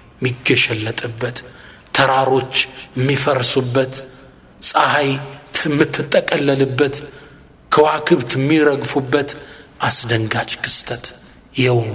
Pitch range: 125-155 Hz